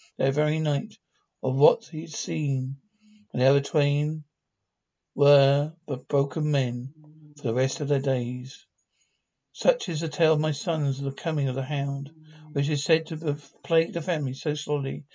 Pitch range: 140-160 Hz